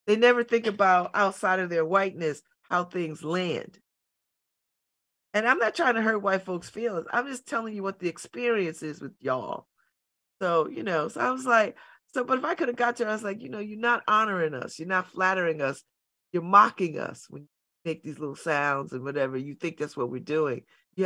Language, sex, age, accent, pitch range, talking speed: English, female, 40-59, American, 165-235 Hz, 220 wpm